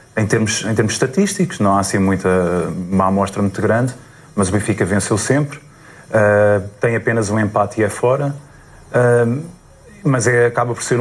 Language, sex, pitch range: Portuguese, male, 100-125 Hz